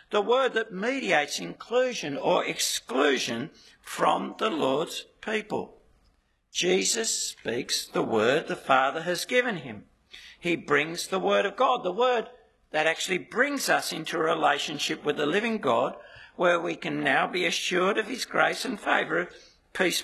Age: 60-79